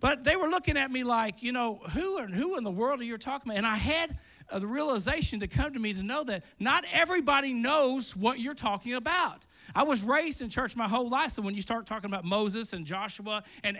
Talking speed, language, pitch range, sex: 245 wpm, English, 200-265 Hz, male